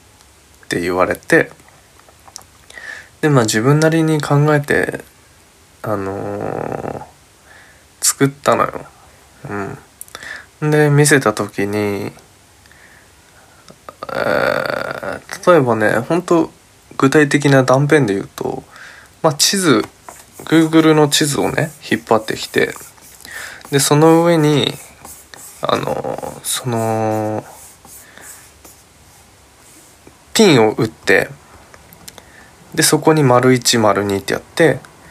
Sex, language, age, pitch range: male, Japanese, 20-39, 100-145 Hz